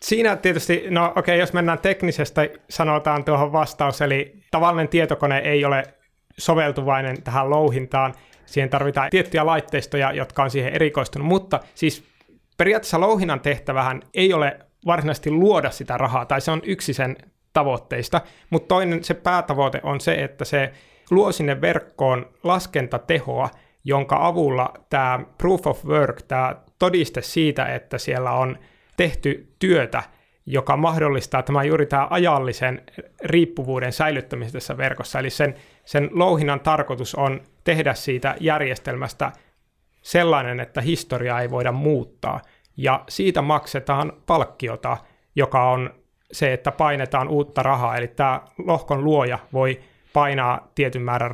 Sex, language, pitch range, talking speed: male, Finnish, 130-165 Hz, 130 wpm